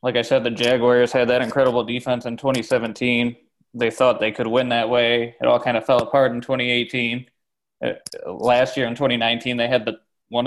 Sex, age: male, 20-39